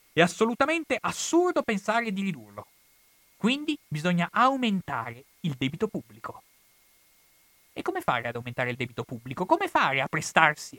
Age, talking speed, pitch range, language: 30-49, 135 wpm, 130-215 Hz, Italian